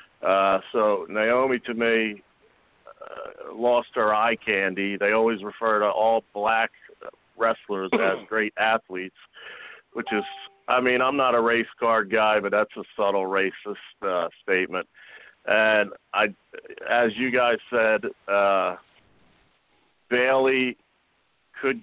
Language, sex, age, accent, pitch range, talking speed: English, male, 50-69, American, 100-120 Hz, 125 wpm